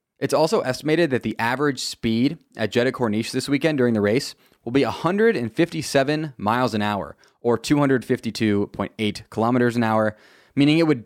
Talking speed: 155 wpm